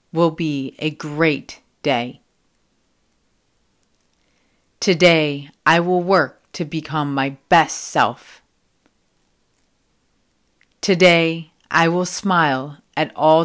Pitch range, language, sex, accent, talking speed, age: 140-170 Hz, English, female, American, 90 wpm, 40-59